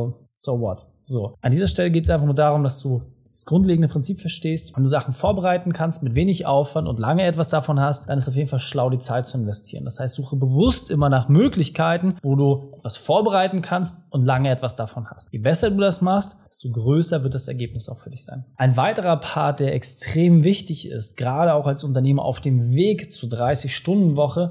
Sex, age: male, 20-39